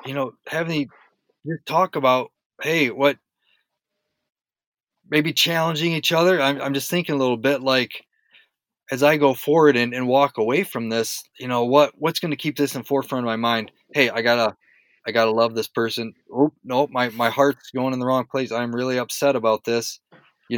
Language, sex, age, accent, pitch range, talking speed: English, male, 20-39, American, 115-140 Hz, 195 wpm